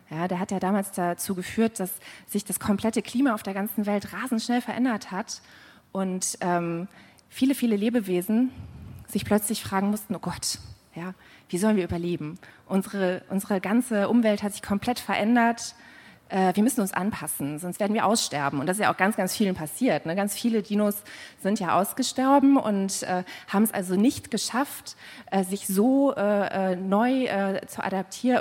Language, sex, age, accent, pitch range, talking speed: German, female, 20-39, German, 180-220 Hz, 175 wpm